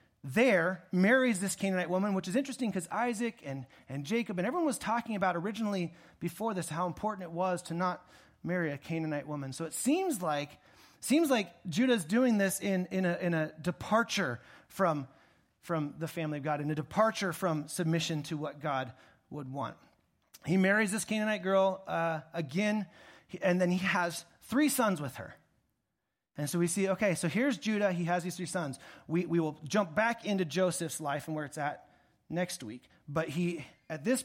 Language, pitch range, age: English, 155-195 Hz, 30-49